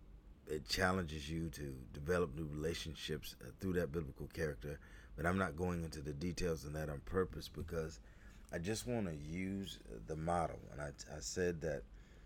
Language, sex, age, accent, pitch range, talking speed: English, male, 40-59, American, 75-95 Hz, 170 wpm